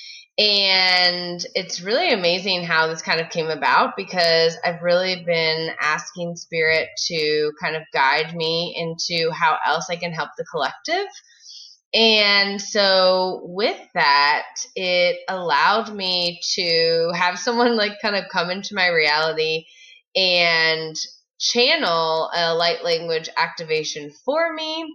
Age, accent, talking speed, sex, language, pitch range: 20-39, American, 130 wpm, female, English, 160-210 Hz